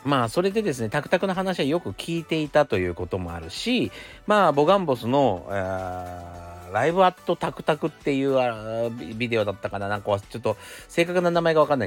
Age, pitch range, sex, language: 40-59, 90-120 Hz, male, Japanese